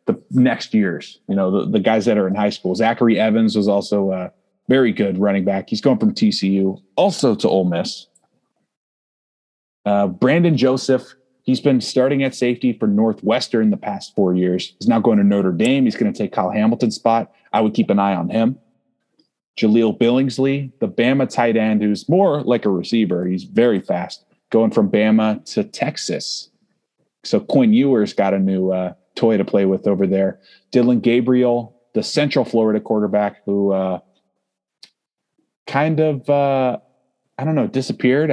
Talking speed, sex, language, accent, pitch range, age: 170 wpm, male, English, American, 100-130 Hz, 30-49